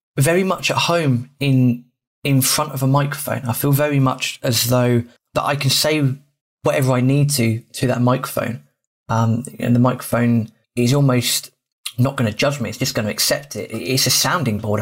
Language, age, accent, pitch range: English, 20-39, British, 120-140 Hz